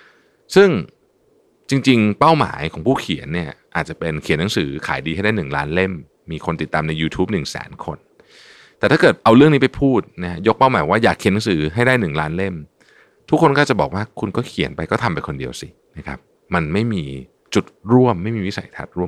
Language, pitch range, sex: Thai, 80-125 Hz, male